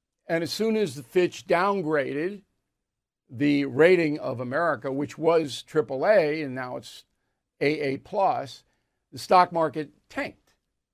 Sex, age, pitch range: male, 50-69, 145-195 Hz